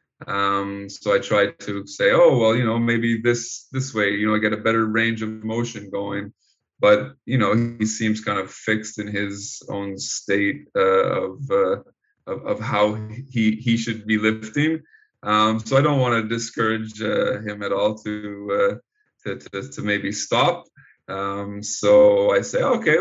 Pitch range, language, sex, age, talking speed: 105-125 Hz, English, male, 20-39, 180 wpm